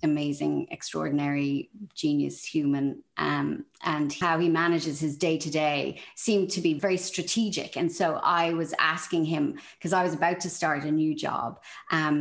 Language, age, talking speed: English, 40-59, 165 wpm